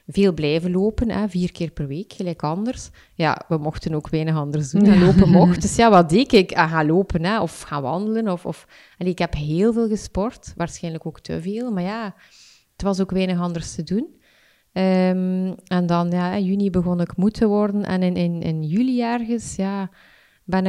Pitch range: 175-210 Hz